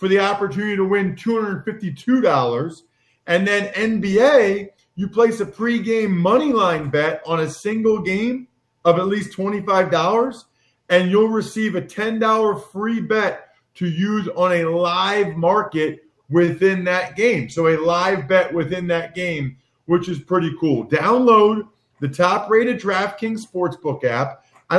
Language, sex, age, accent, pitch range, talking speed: English, male, 40-59, American, 160-200 Hz, 140 wpm